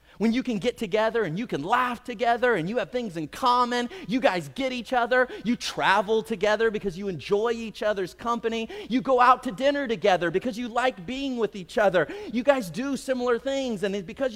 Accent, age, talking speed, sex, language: American, 30-49, 210 wpm, male, English